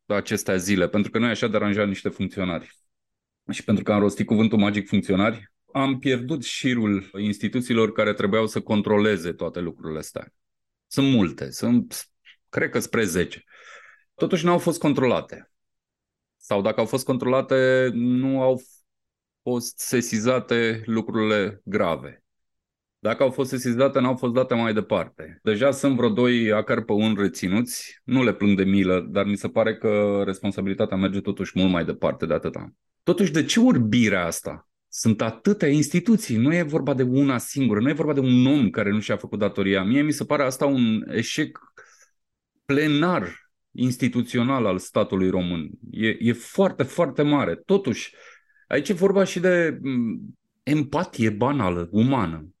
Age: 30-49